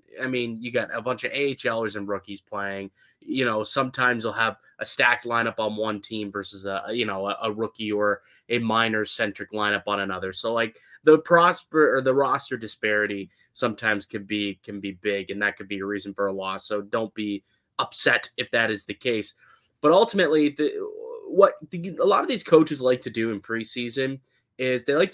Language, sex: English, male